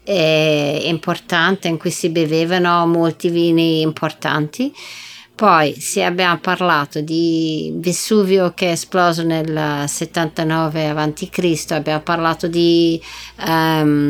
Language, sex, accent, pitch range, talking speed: Italian, female, native, 155-190 Hz, 105 wpm